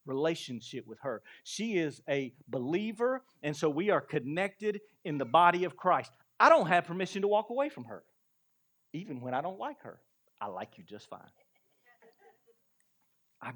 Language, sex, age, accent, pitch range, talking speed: English, male, 40-59, American, 150-200 Hz, 170 wpm